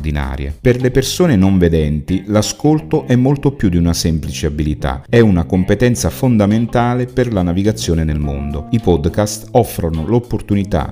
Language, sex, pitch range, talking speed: Italian, male, 80-115 Hz, 145 wpm